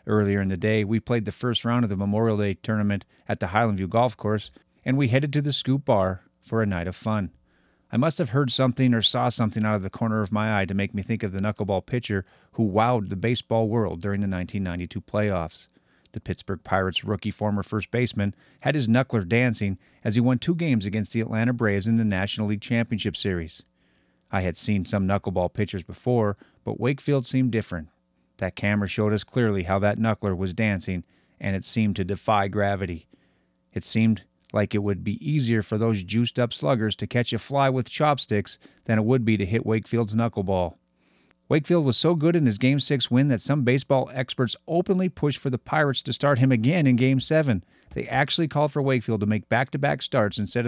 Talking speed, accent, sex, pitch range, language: 210 wpm, American, male, 100-125 Hz, English